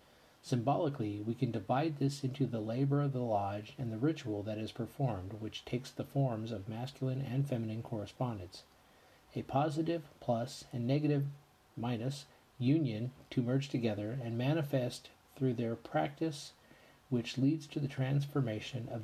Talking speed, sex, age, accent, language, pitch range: 150 wpm, male, 40-59, American, English, 110-135 Hz